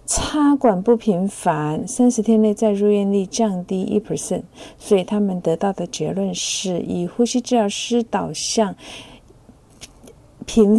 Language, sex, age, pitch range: Chinese, female, 50-69, 185-225 Hz